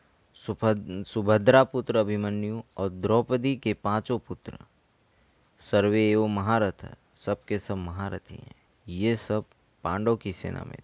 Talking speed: 120 wpm